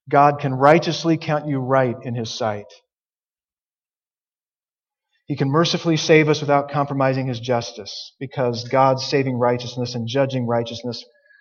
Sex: male